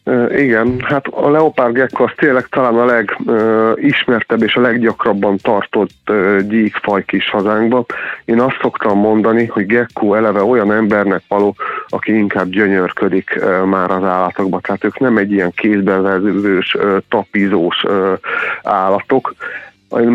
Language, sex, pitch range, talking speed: Hungarian, male, 95-110 Hz, 135 wpm